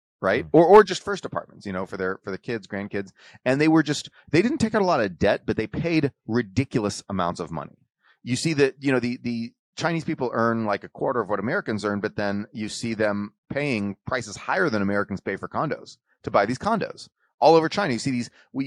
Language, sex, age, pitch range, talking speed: English, male, 30-49, 100-130 Hz, 240 wpm